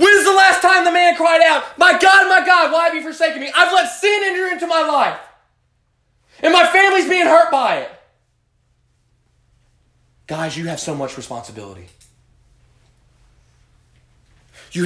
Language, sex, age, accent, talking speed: English, male, 30-49, American, 160 wpm